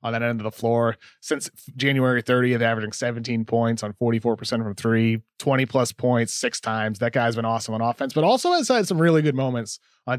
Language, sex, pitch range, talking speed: English, male, 115-140 Hz, 205 wpm